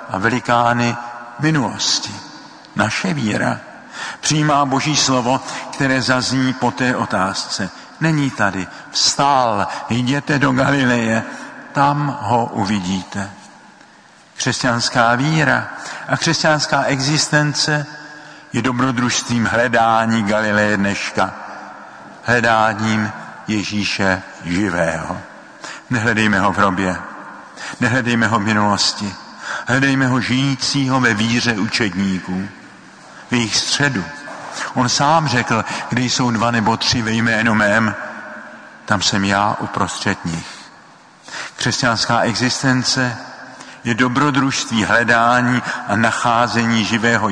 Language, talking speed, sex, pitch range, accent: Czech, 95 wpm, male, 110-130 Hz, native